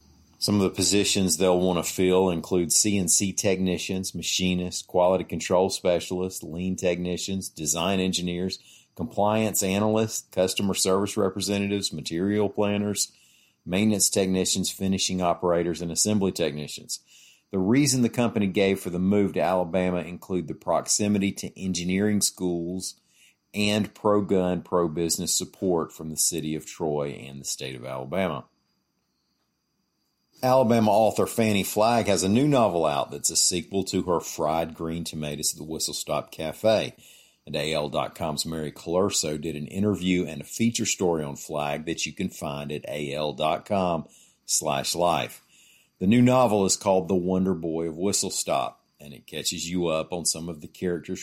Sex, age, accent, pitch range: male, 40-59, American, 80-95 Hz